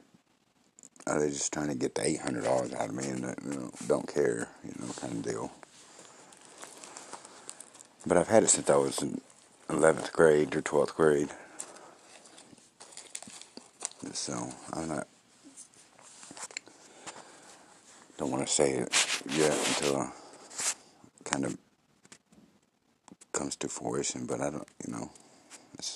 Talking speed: 125 wpm